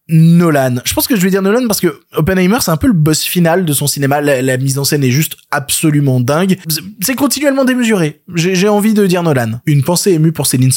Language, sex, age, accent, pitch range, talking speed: French, male, 20-39, French, 145-200 Hz, 245 wpm